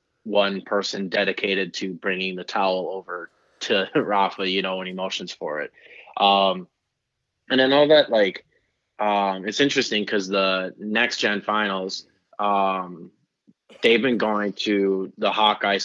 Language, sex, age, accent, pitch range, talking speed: English, male, 20-39, American, 95-105 Hz, 140 wpm